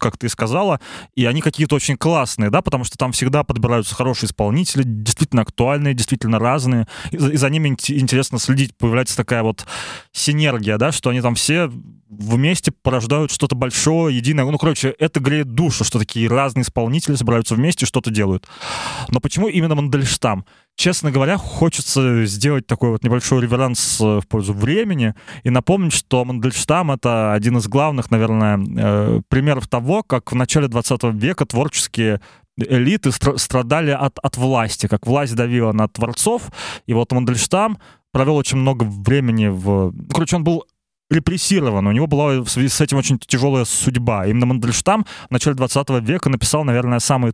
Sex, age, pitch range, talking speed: male, 20-39, 115-145 Hz, 160 wpm